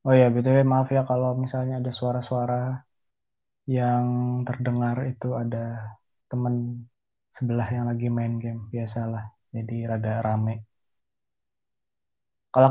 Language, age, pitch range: Indonesian, 20-39, 120-130 Hz